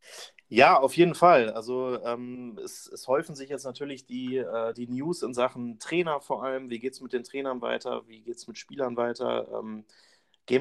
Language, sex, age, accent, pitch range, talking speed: German, male, 30-49, German, 115-130 Hz, 205 wpm